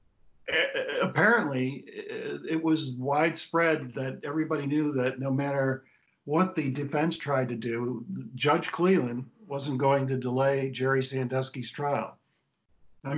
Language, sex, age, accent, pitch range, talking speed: English, male, 50-69, American, 120-145 Hz, 120 wpm